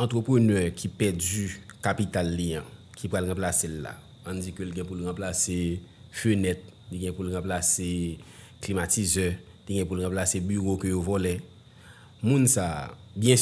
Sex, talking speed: male, 150 wpm